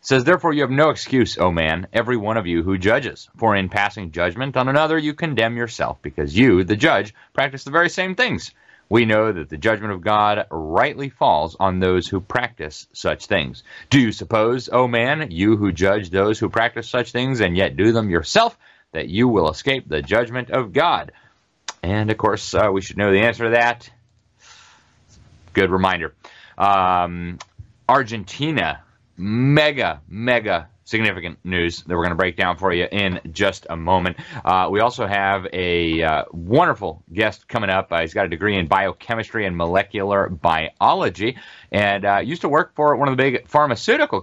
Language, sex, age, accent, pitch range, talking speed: English, male, 30-49, American, 90-120 Hz, 180 wpm